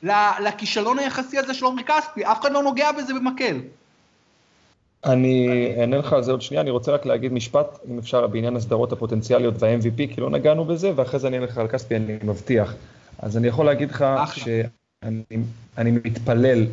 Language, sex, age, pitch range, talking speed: Hebrew, male, 20-39, 110-130 Hz, 180 wpm